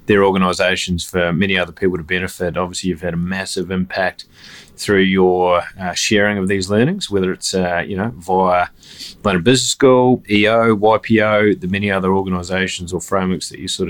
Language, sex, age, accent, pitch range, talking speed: English, male, 20-39, Australian, 90-100 Hz, 175 wpm